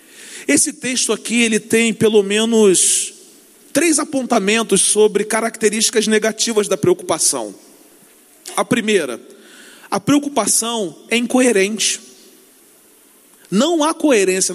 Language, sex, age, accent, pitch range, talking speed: Portuguese, male, 40-59, Brazilian, 225-315 Hz, 95 wpm